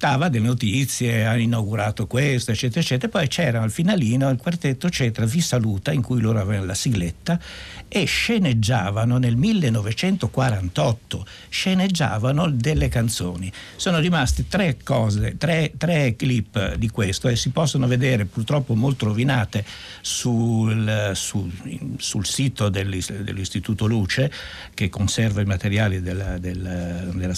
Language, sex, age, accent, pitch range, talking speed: Italian, male, 60-79, native, 105-135 Hz, 130 wpm